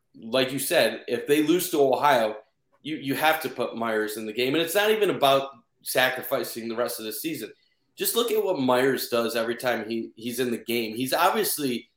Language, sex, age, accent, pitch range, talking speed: English, male, 30-49, American, 125-165 Hz, 215 wpm